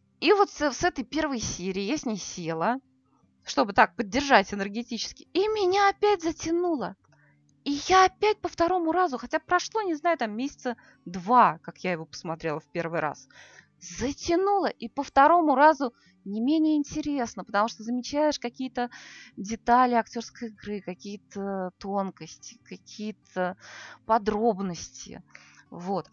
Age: 20-39